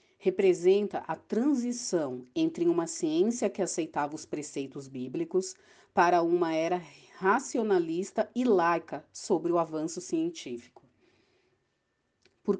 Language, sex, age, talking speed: Portuguese, female, 40-59, 105 wpm